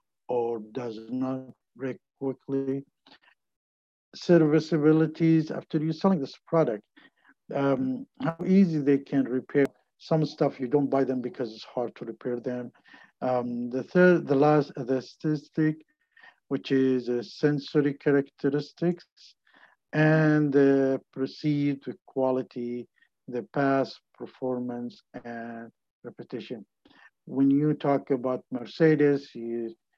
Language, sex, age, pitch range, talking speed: English, male, 50-69, 120-155 Hz, 115 wpm